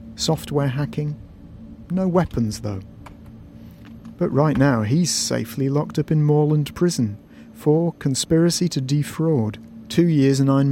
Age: 40-59